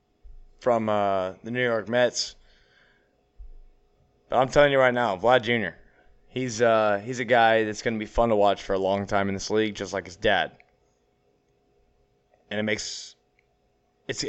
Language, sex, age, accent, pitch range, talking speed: English, male, 20-39, American, 65-110 Hz, 170 wpm